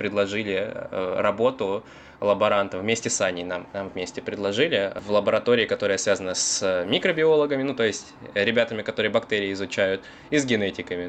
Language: Russian